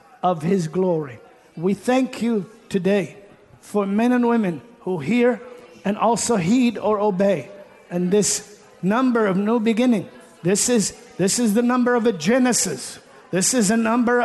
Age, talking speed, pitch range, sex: 50-69, 155 wpm, 215-260 Hz, male